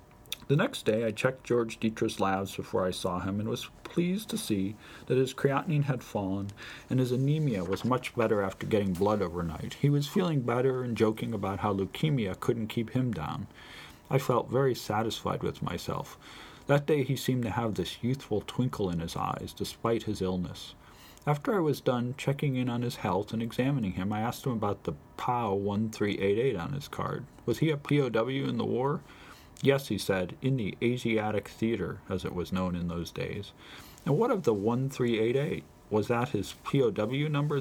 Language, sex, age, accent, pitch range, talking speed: English, male, 40-59, American, 100-130 Hz, 190 wpm